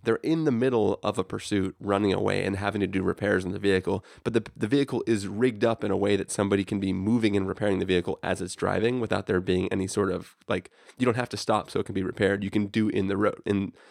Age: 20-39